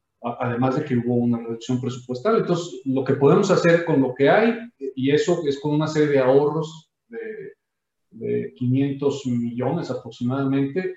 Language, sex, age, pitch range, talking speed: Spanish, male, 40-59, 125-160 Hz, 160 wpm